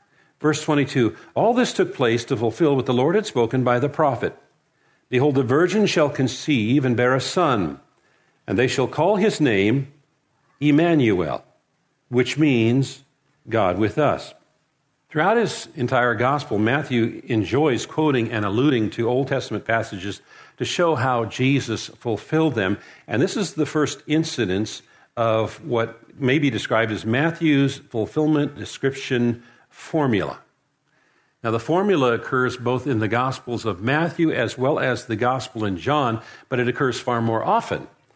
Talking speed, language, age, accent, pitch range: 150 wpm, English, 50-69, American, 115-145 Hz